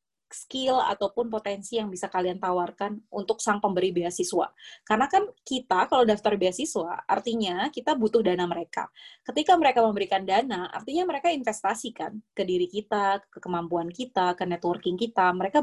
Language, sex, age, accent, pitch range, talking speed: Indonesian, female, 20-39, native, 180-230 Hz, 150 wpm